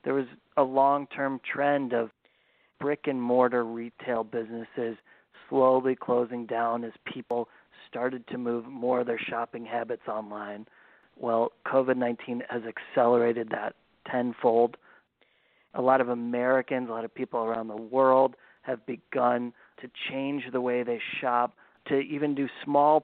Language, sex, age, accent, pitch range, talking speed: English, male, 40-59, American, 120-135 Hz, 135 wpm